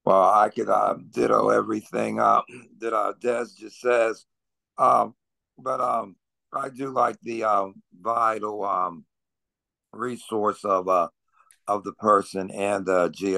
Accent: American